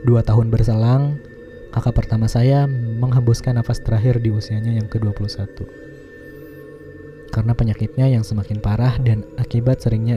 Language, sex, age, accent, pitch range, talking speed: Indonesian, male, 20-39, native, 110-130 Hz, 125 wpm